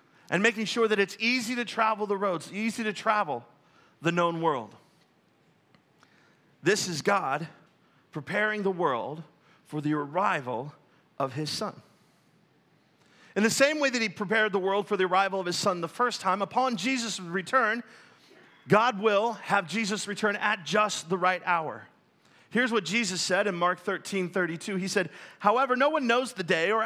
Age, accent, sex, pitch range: 40-59, American, male, 180-230 Hz